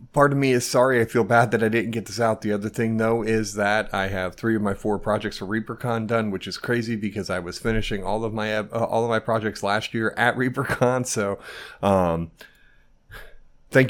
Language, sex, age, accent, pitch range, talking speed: English, male, 30-49, American, 105-125 Hz, 225 wpm